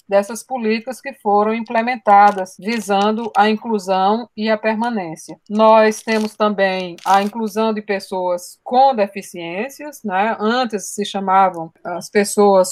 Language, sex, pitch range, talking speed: Portuguese, female, 195-230 Hz, 125 wpm